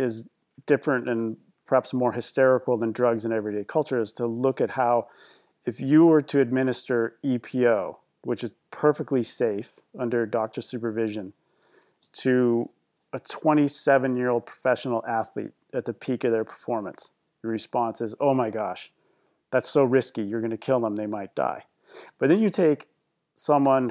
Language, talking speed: English, 155 wpm